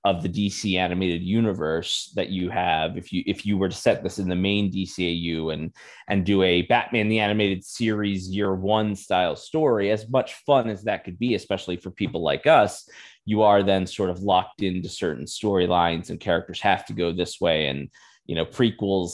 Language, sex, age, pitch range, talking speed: English, male, 20-39, 90-105 Hz, 200 wpm